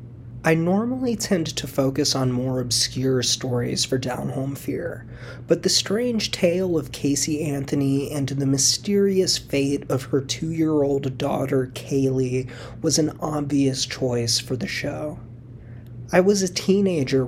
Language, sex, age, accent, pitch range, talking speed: English, male, 30-49, American, 130-165 Hz, 135 wpm